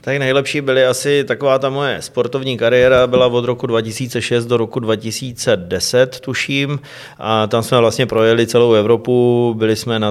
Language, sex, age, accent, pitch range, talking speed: Czech, male, 30-49, native, 105-120 Hz, 160 wpm